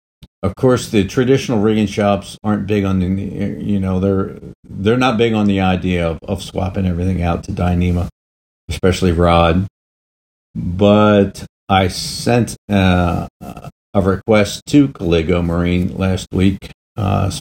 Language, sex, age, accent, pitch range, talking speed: English, male, 50-69, American, 85-100 Hz, 140 wpm